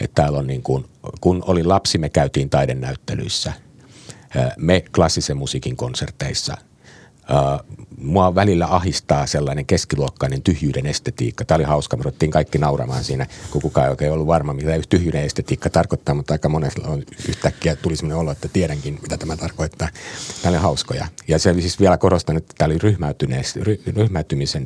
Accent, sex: native, male